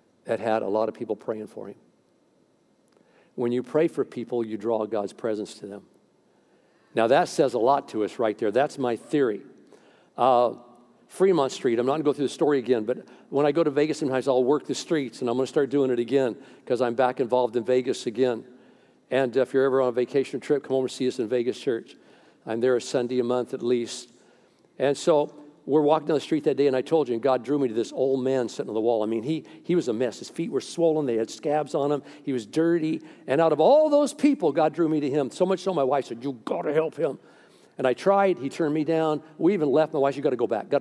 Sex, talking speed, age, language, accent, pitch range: male, 265 wpm, 50-69, English, American, 125-165 Hz